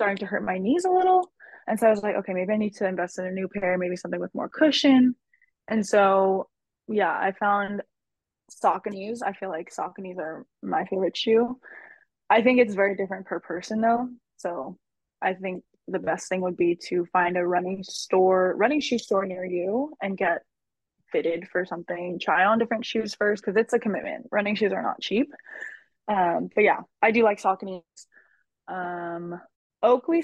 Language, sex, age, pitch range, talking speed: English, female, 20-39, 185-250 Hz, 190 wpm